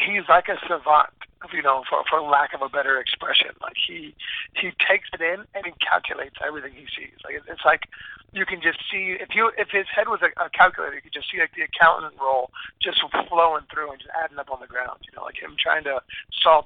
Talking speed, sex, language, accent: 235 wpm, male, English, American